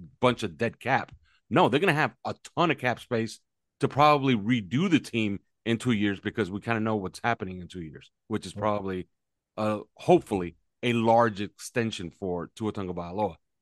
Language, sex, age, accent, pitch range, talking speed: English, male, 40-59, American, 100-125 Hz, 185 wpm